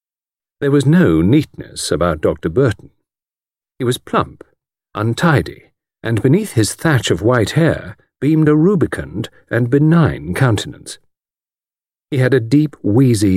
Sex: male